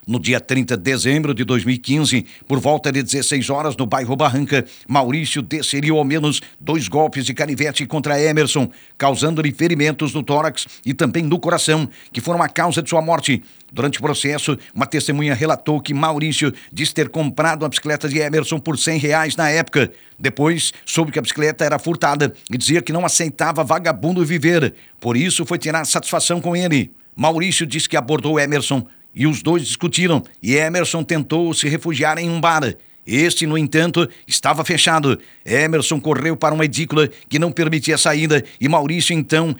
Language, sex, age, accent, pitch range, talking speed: Portuguese, male, 60-79, Brazilian, 140-165 Hz, 175 wpm